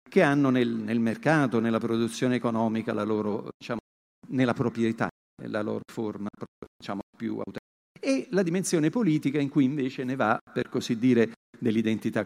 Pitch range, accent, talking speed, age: 115-155 Hz, native, 155 wpm, 50-69